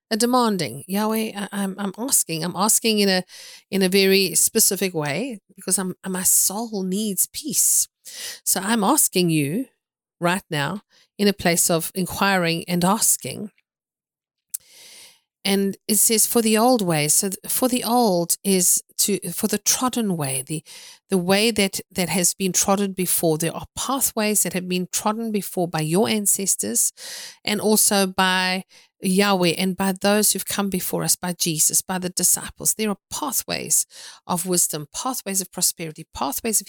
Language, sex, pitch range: English, female, 175-215 Hz